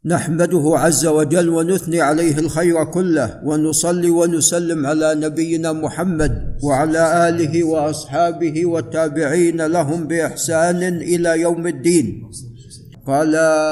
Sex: male